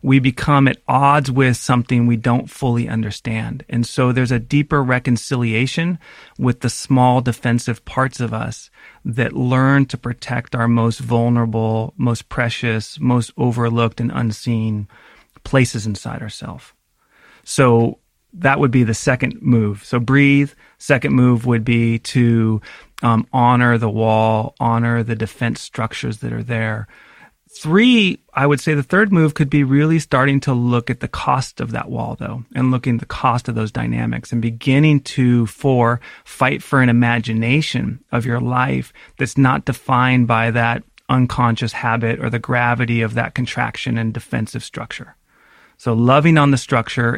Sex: male